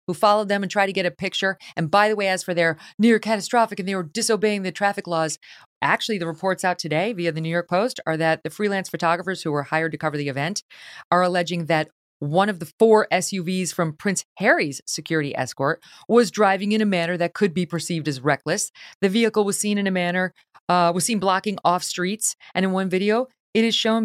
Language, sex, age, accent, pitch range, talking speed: English, female, 40-59, American, 155-210 Hz, 230 wpm